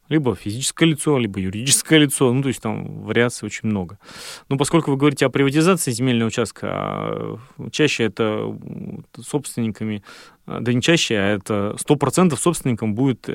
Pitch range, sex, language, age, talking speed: 110-140 Hz, male, Russian, 20-39, 145 wpm